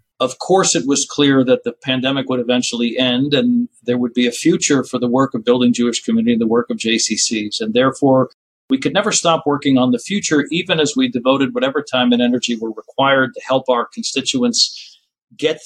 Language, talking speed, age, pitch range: English, 205 wpm, 50-69, 125-175 Hz